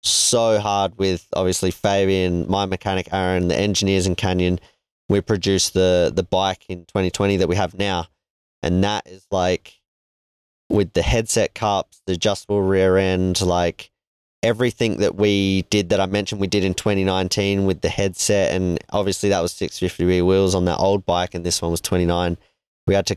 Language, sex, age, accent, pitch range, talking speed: English, male, 20-39, Australian, 90-100 Hz, 180 wpm